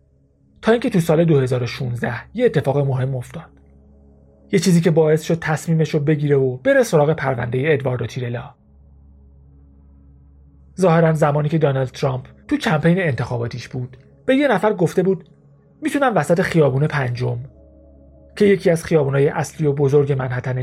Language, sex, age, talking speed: Persian, male, 40-59, 145 wpm